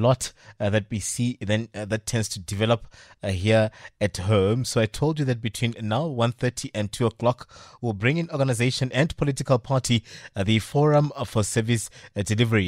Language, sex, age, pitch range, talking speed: English, male, 30-49, 110-135 Hz, 185 wpm